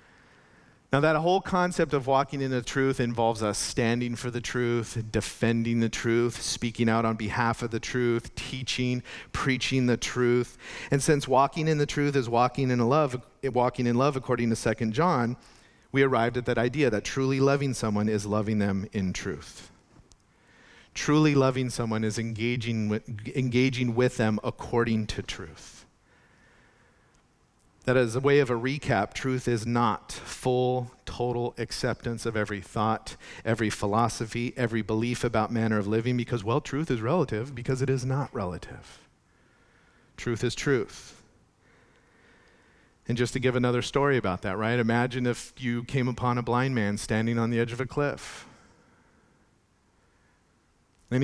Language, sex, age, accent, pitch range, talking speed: English, male, 40-59, American, 115-130 Hz, 160 wpm